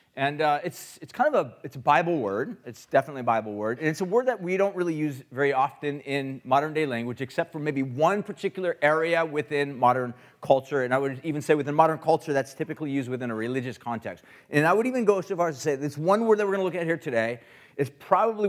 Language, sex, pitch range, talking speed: English, male, 140-205 Hz, 255 wpm